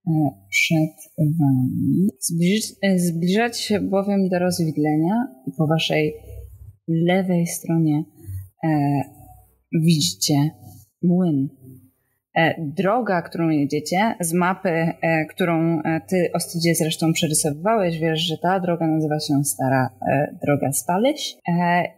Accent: native